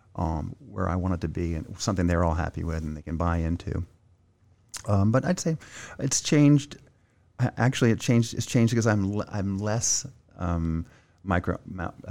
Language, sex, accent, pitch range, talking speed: English, male, American, 85-110 Hz, 175 wpm